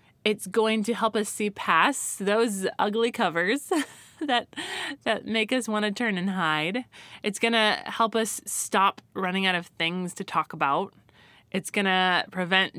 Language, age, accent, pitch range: English, 20-39, American, 175-225 Hz